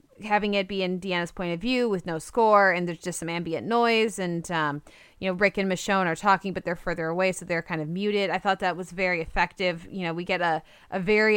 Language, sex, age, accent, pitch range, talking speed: English, female, 20-39, American, 175-210 Hz, 255 wpm